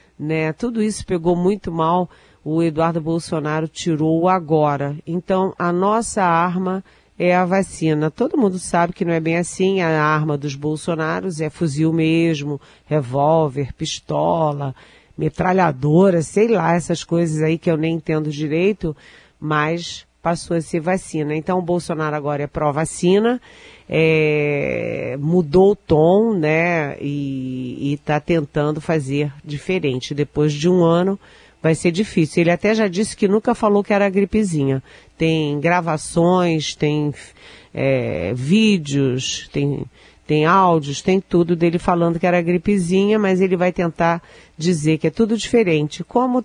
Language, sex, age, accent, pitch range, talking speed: Portuguese, female, 40-59, Brazilian, 155-185 Hz, 140 wpm